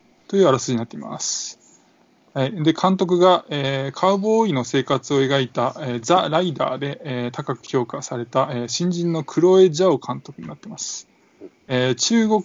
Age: 20-39